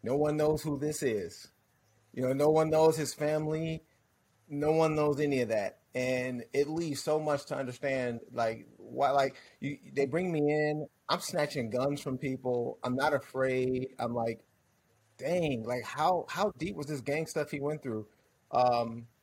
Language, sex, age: English, male, 30-49